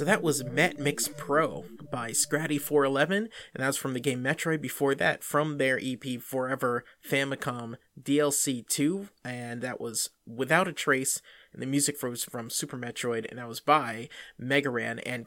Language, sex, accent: English, male, American